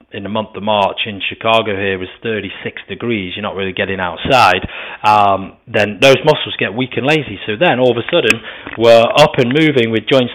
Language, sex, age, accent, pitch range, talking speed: English, male, 30-49, British, 105-130 Hz, 215 wpm